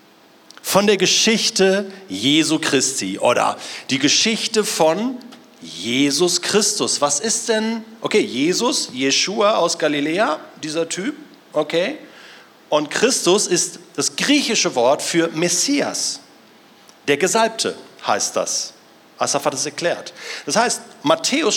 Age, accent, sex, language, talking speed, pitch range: 40-59, German, male, German, 115 wpm, 165-225 Hz